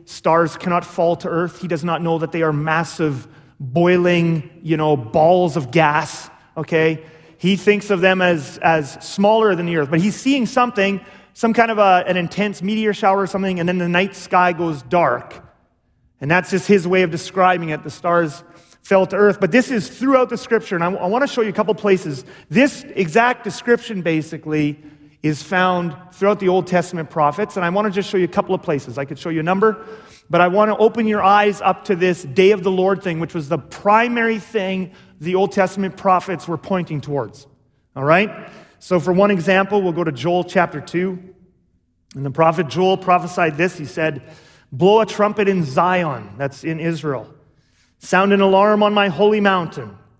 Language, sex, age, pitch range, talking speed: English, male, 30-49, 160-200 Hz, 205 wpm